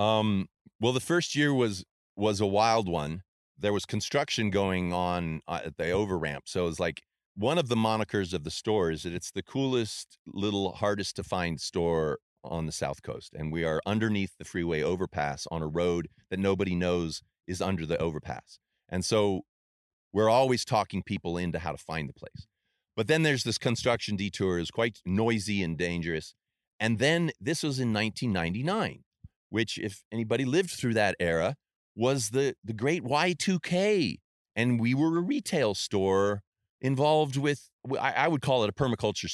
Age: 40-59